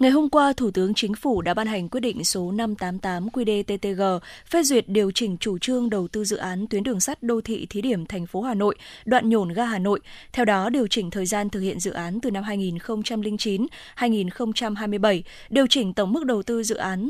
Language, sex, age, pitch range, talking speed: Vietnamese, female, 20-39, 200-245 Hz, 220 wpm